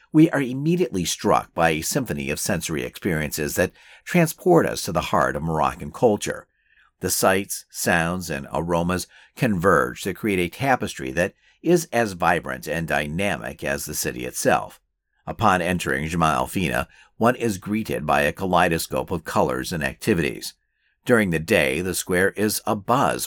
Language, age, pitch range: English, 50-69, 80-105 Hz